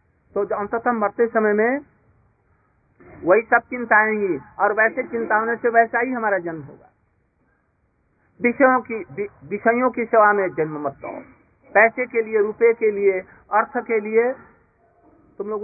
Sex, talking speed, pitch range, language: male, 150 wpm, 150-225 Hz, Hindi